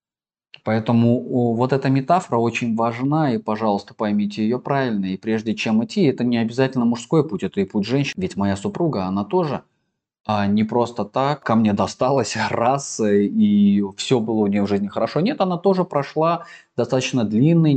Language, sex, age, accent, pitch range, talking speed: Russian, male, 20-39, native, 100-140 Hz, 170 wpm